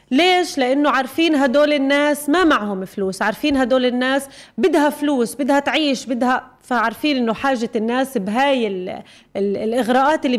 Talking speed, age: 145 wpm, 30-49